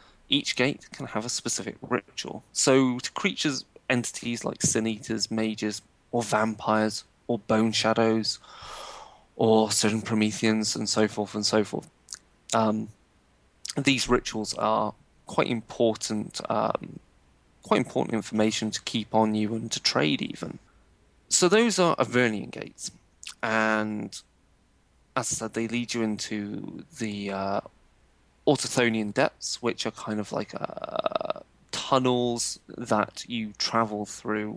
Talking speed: 130 wpm